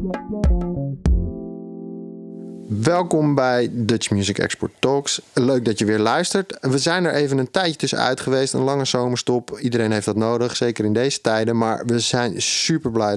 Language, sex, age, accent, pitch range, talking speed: Dutch, male, 30-49, Dutch, 105-130 Hz, 160 wpm